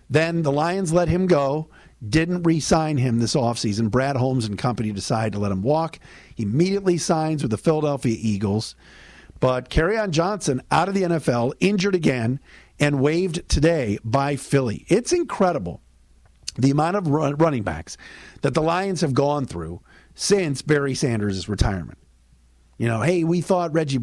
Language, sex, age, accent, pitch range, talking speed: English, male, 50-69, American, 110-165 Hz, 160 wpm